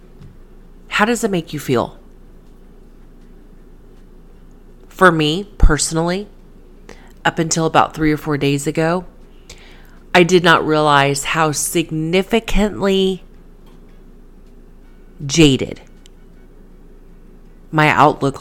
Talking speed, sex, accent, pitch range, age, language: 85 wpm, female, American, 130-170 Hz, 30-49, English